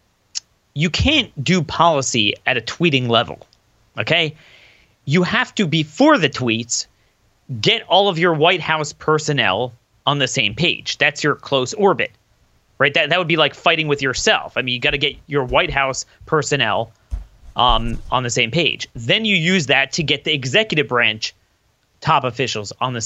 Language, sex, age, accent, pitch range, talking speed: English, male, 30-49, American, 125-175 Hz, 175 wpm